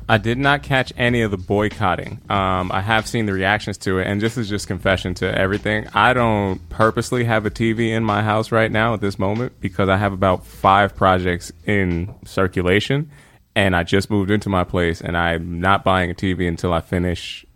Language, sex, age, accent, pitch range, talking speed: English, male, 20-39, American, 90-110 Hz, 210 wpm